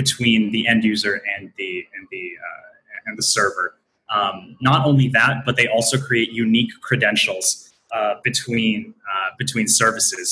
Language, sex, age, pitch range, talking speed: English, male, 20-39, 110-140 Hz, 155 wpm